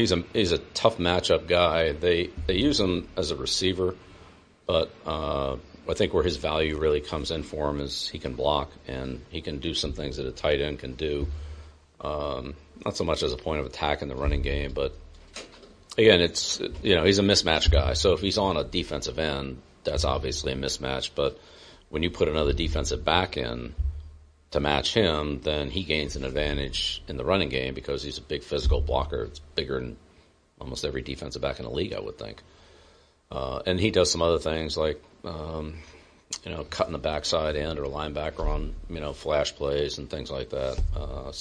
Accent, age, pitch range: American, 40-59, 70-85 Hz